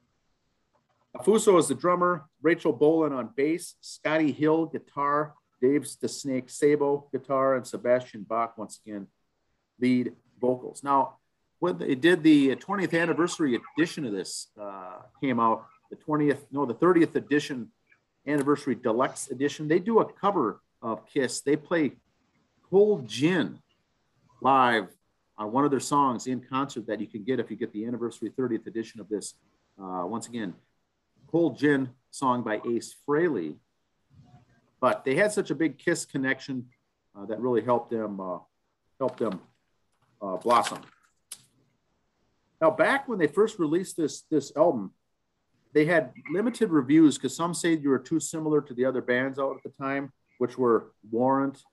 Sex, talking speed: male, 155 wpm